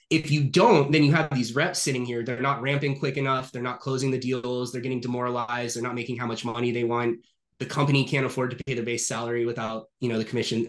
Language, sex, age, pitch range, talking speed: English, male, 20-39, 120-150 Hz, 255 wpm